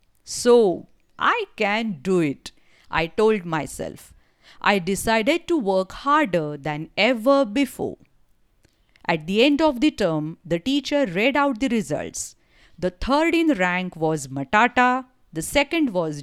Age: 50-69